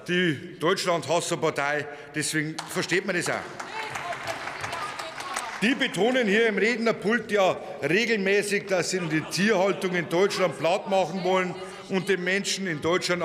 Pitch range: 175-220 Hz